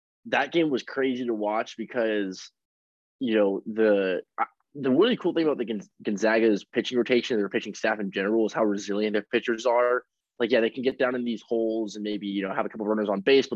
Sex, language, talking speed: male, English, 230 wpm